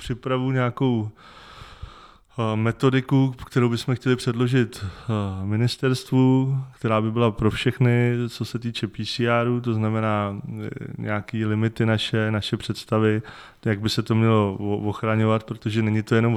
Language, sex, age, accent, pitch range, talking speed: Czech, male, 20-39, native, 110-120 Hz, 125 wpm